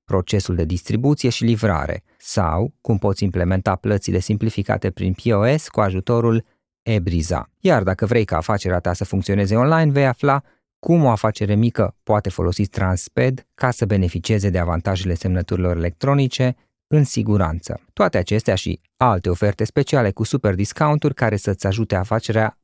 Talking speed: 150 wpm